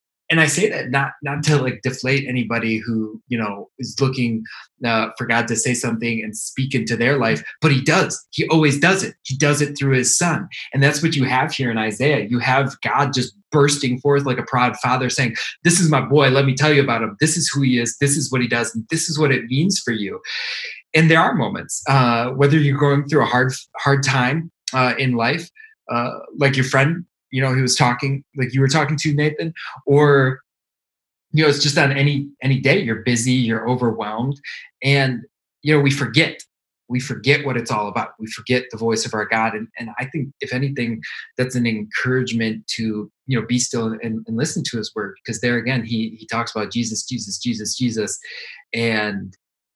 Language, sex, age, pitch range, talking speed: English, male, 20-39, 115-145 Hz, 215 wpm